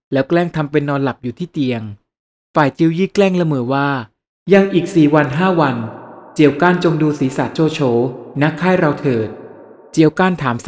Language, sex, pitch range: Thai, male, 135-175 Hz